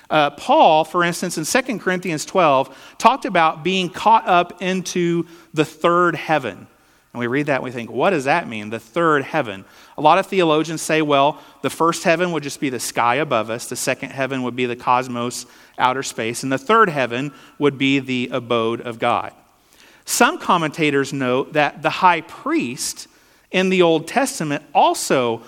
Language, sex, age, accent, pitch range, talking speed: English, male, 40-59, American, 130-170 Hz, 185 wpm